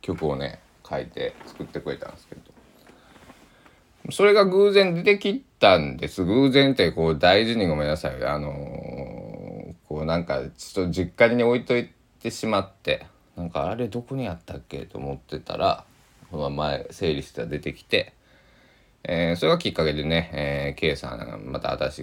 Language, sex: Japanese, male